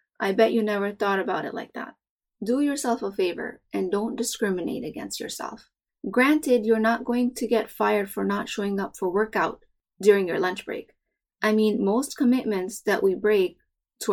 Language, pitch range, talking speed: English, 195-240 Hz, 185 wpm